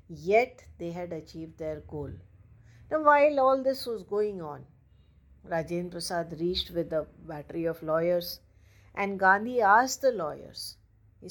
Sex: female